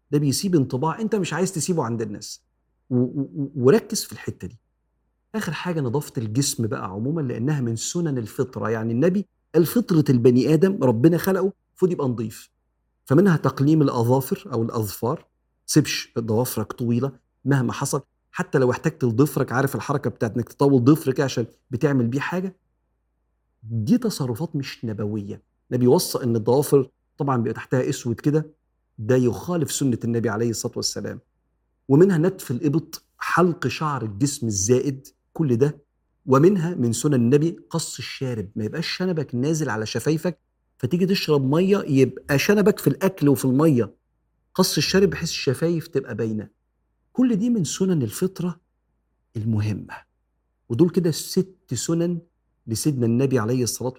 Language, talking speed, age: Arabic, 140 wpm, 50-69